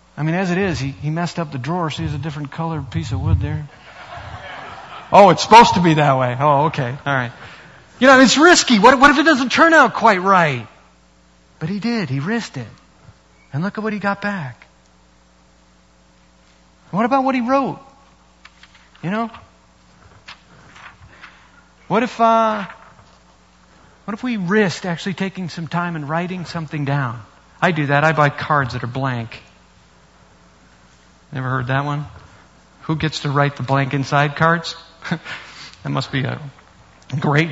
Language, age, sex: English, 40-59, male